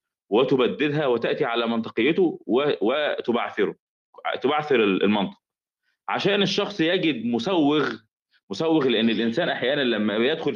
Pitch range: 110-170 Hz